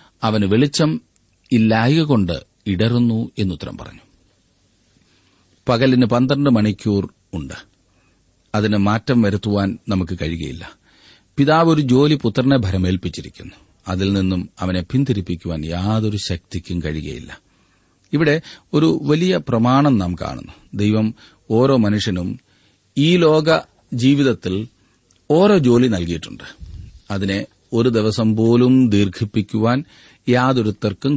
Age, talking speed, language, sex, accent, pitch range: 40-59, 90 wpm, Malayalam, male, native, 90-120 Hz